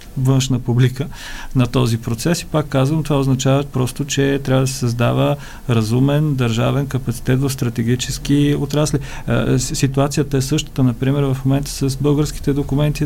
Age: 40-59